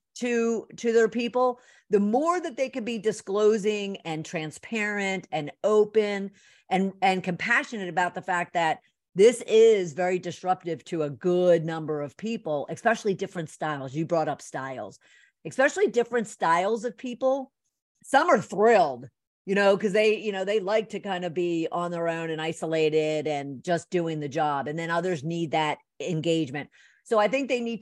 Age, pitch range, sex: 50-69, 165-220 Hz, female